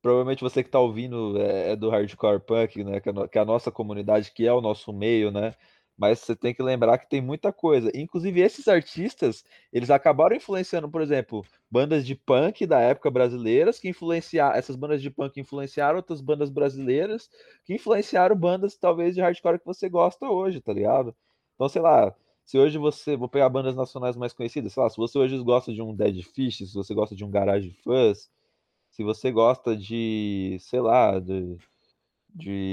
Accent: Brazilian